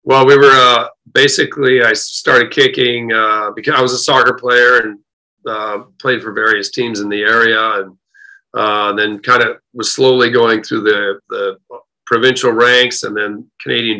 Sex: male